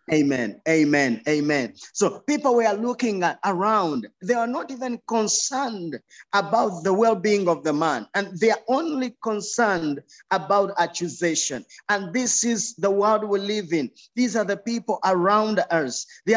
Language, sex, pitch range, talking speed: English, male, 175-220 Hz, 160 wpm